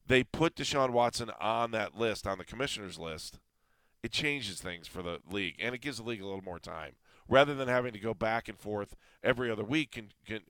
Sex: male